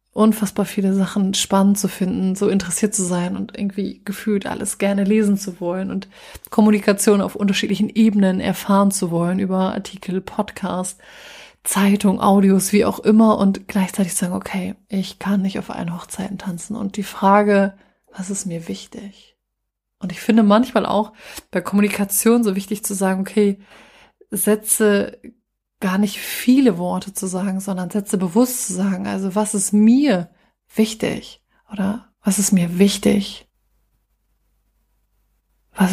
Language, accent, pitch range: German, German, 195-215 Hz